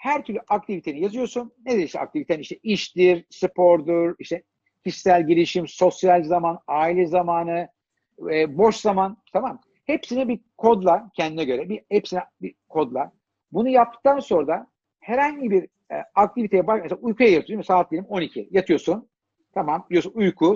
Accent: native